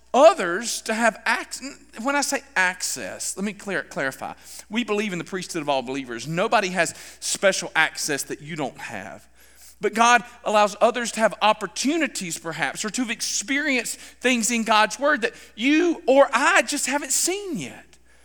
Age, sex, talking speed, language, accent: 40-59, male, 170 wpm, English, American